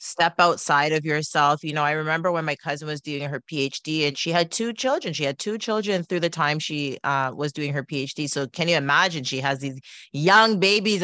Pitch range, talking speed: 160-220 Hz, 230 wpm